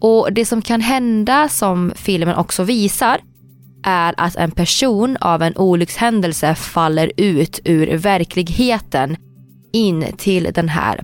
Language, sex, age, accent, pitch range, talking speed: Swedish, female, 20-39, native, 155-215 Hz, 135 wpm